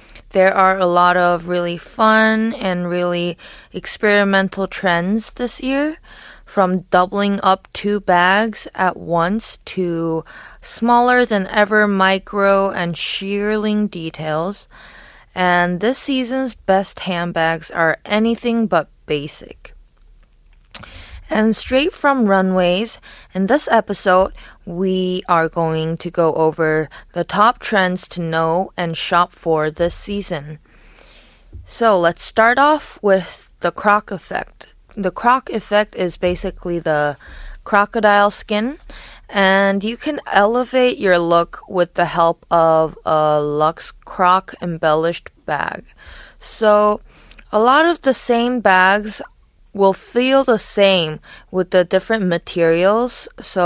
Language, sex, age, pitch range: Korean, female, 20-39, 175-215 Hz